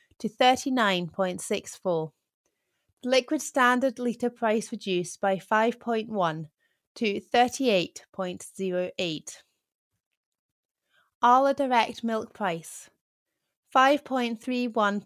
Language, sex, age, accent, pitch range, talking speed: English, female, 30-49, British, 190-245 Hz, 70 wpm